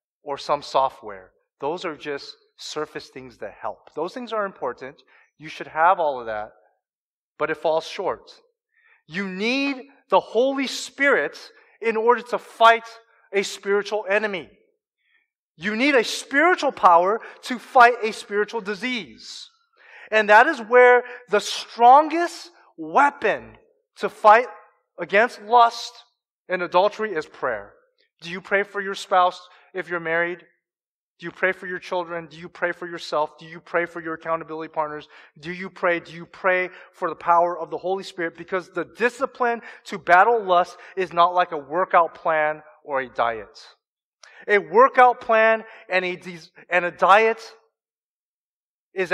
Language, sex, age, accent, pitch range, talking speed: English, male, 30-49, American, 170-240 Hz, 150 wpm